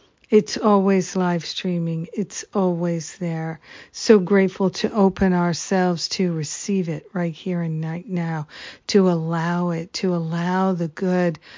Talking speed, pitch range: 140 wpm, 170-190 Hz